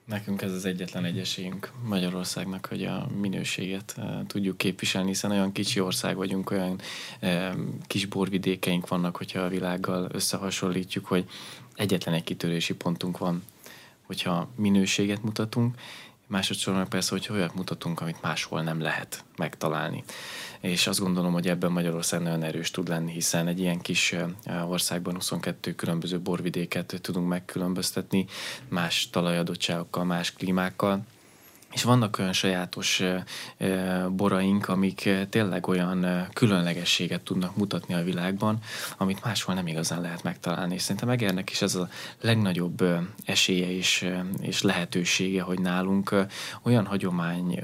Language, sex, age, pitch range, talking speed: Hungarian, male, 20-39, 90-100 Hz, 125 wpm